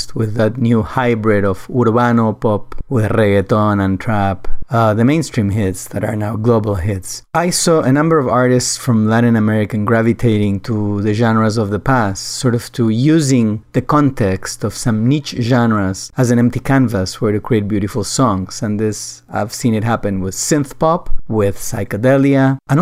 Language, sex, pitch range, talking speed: English, male, 100-130 Hz, 175 wpm